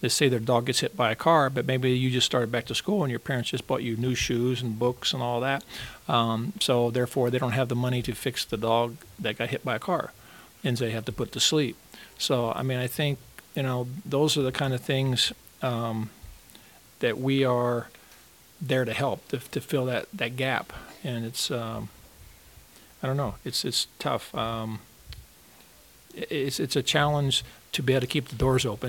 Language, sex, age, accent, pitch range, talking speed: English, male, 50-69, American, 120-135 Hz, 215 wpm